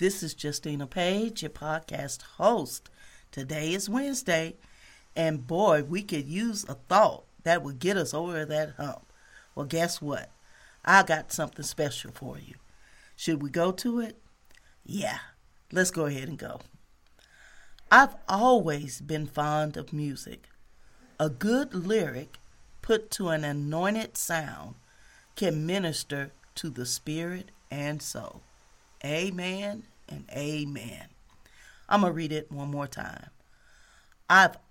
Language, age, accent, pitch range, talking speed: English, 40-59, American, 150-200 Hz, 135 wpm